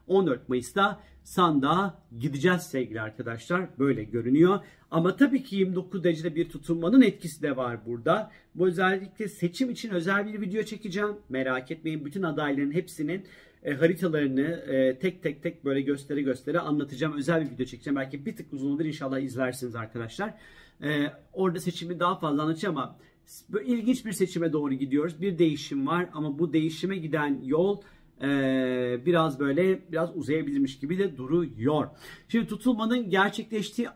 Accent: native